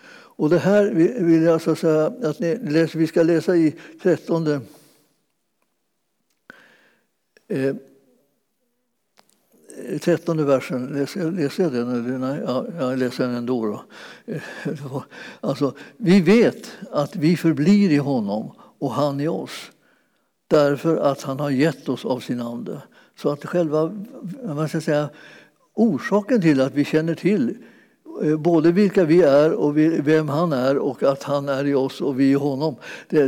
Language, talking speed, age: Swedish, 135 wpm, 60-79